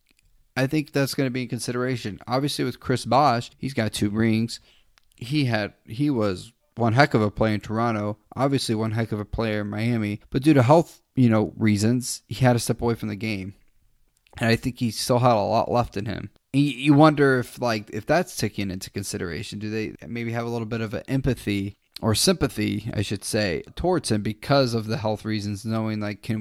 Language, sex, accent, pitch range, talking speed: English, male, American, 105-130 Hz, 220 wpm